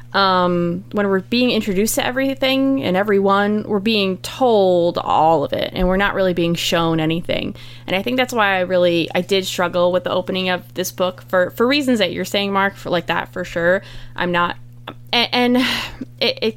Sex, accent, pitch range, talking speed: female, American, 170-215 Hz, 205 wpm